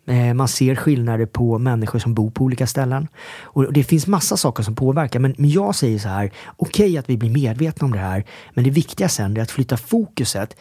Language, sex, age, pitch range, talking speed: English, male, 30-49, 115-150 Hz, 220 wpm